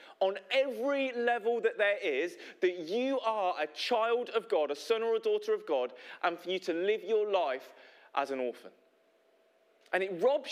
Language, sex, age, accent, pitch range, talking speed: English, male, 30-49, British, 190-280 Hz, 190 wpm